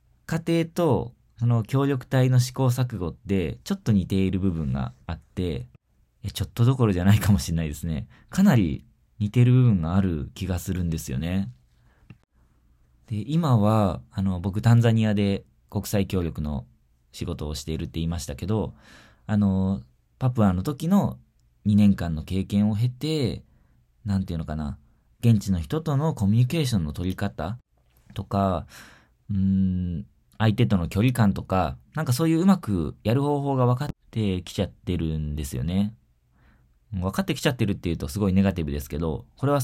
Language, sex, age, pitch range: Japanese, male, 20-39, 80-115 Hz